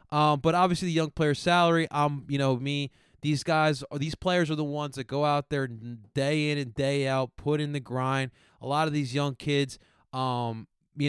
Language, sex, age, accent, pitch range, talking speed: English, male, 20-39, American, 125-150 Hz, 215 wpm